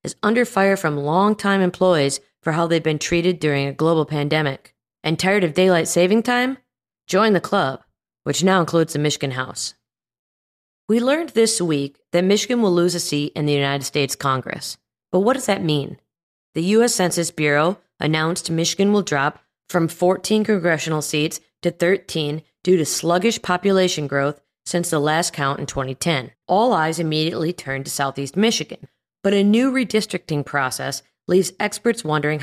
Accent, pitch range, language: American, 145-190 Hz, English